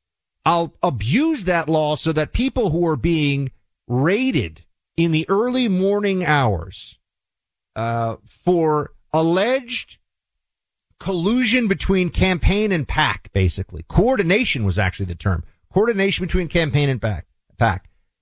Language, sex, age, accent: English, male, 50-69, American